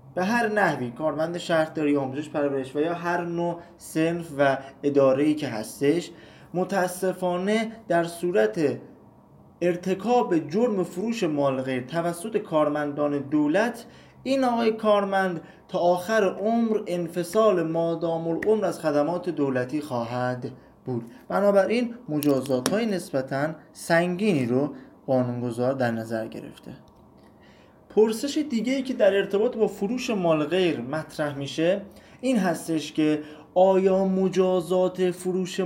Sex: male